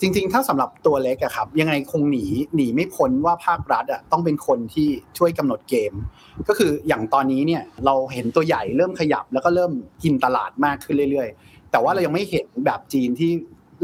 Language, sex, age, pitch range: Thai, male, 30-49, 135-170 Hz